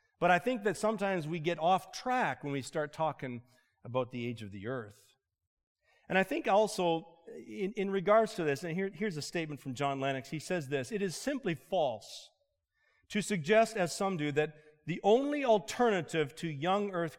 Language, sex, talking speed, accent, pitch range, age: English, male, 190 wpm, American, 145-195 Hz, 40-59